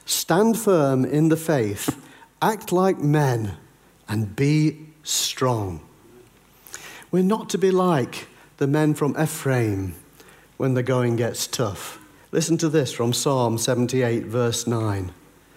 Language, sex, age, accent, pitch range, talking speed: English, male, 50-69, British, 115-160 Hz, 125 wpm